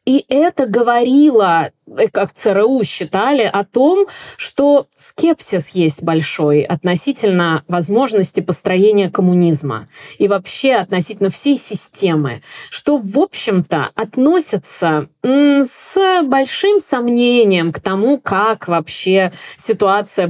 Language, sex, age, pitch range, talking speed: Russian, female, 20-39, 180-250 Hz, 100 wpm